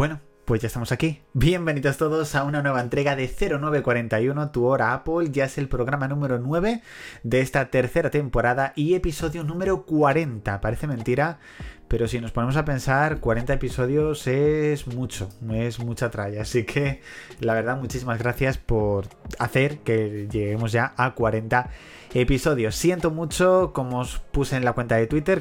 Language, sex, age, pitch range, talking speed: Spanish, male, 20-39, 115-140 Hz, 165 wpm